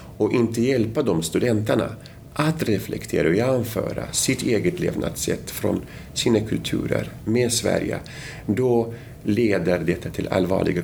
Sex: male